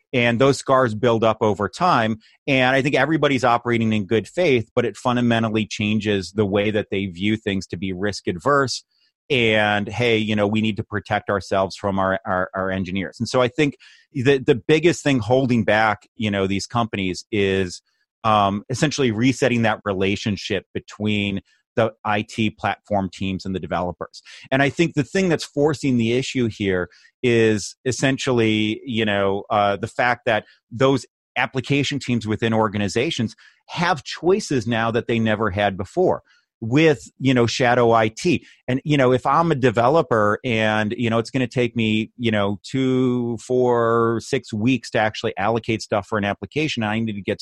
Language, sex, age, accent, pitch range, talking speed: English, male, 30-49, American, 105-130 Hz, 175 wpm